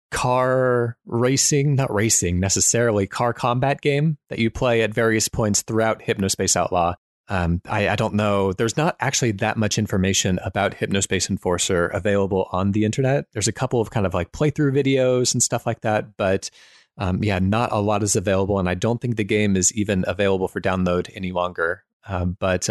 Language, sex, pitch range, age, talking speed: English, male, 95-120 Hz, 30-49, 190 wpm